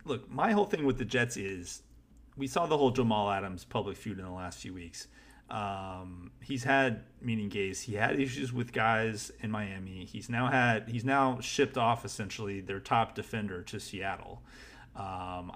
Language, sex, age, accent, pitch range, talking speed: English, male, 30-49, American, 105-130 Hz, 180 wpm